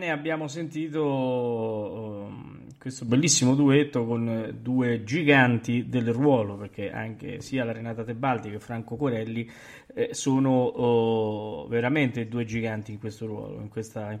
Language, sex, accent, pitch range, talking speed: Italian, male, native, 115-140 Hz, 125 wpm